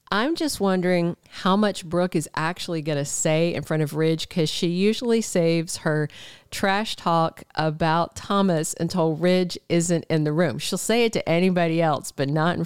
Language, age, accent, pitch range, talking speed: English, 50-69, American, 155-195 Hz, 185 wpm